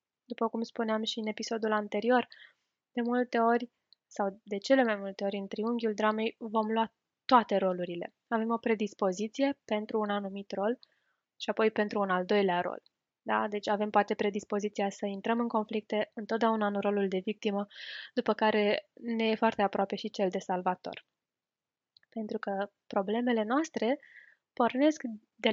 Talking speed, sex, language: 155 wpm, female, Romanian